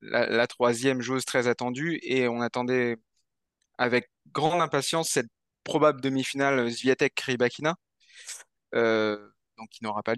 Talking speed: 120 wpm